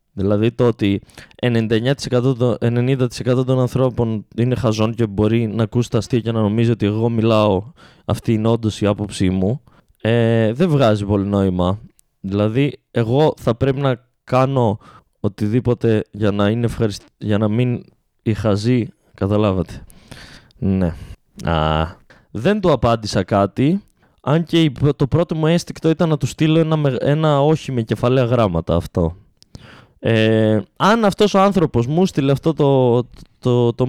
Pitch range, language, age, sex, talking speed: 110-155 Hz, Greek, 20-39, male, 145 wpm